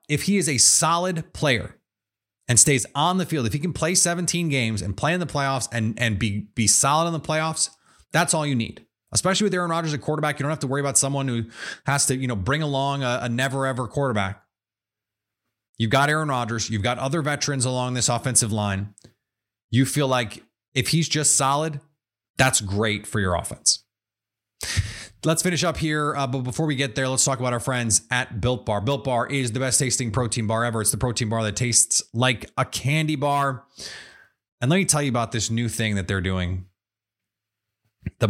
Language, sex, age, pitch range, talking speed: English, male, 30-49, 110-145 Hz, 210 wpm